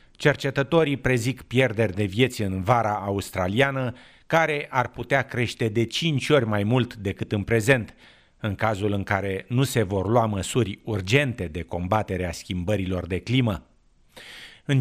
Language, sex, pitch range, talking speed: English, male, 95-130 Hz, 145 wpm